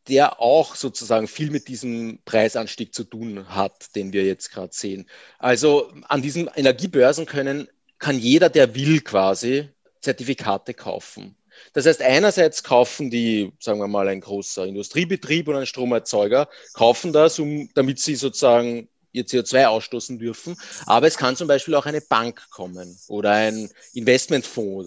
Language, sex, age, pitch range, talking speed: German, male, 30-49, 115-145 Hz, 150 wpm